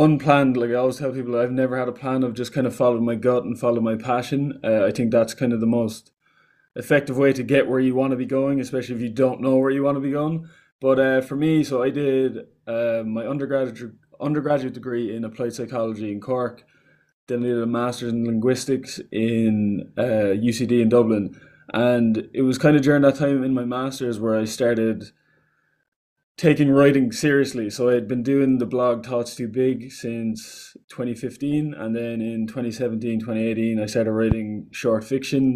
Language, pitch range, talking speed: English, 115-135 Hz, 200 wpm